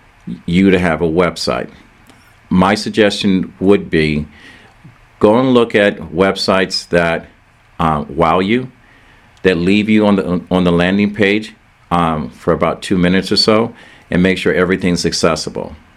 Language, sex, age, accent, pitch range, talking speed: English, male, 50-69, American, 80-95 Hz, 145 wpm